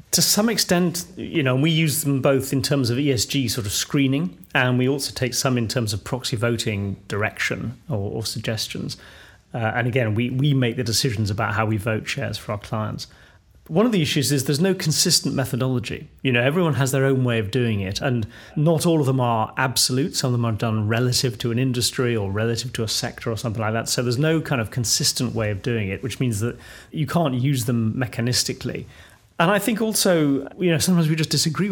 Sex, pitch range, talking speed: male, 115-145 Hz, 225 wpm